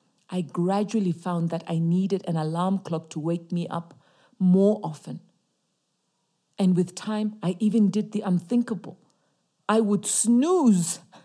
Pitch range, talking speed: 170-215 Hz, 140 wpm